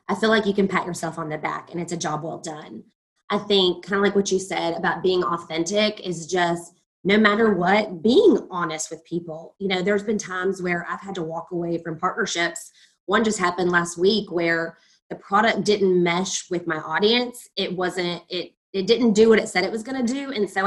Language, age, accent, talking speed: English, 20-39, American, 225 wpm